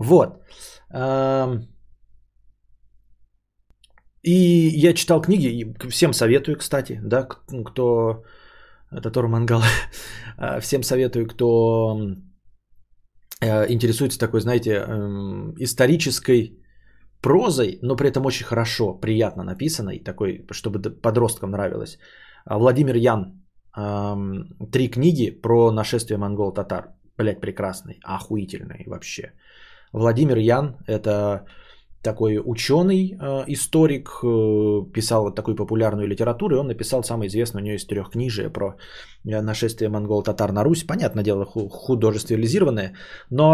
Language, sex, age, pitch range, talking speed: Bulgarian, male, 20-39, 105-130 Hz, 95 wpm